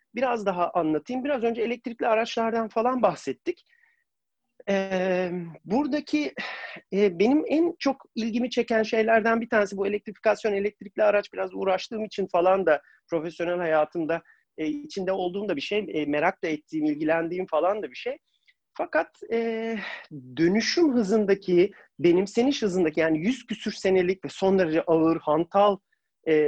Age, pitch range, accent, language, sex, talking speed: 40-59, 170-235 Hz, native, Turkish, male, 140 wpm